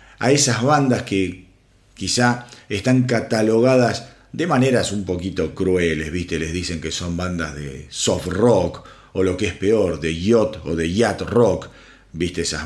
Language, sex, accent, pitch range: Spanish, male, Argentinian, 105-135 Hz